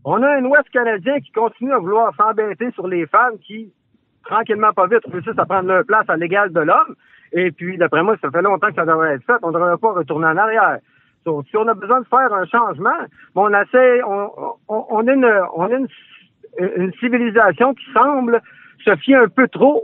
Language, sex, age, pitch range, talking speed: French, male, 50-69, 190-245 Hz, 190 wpm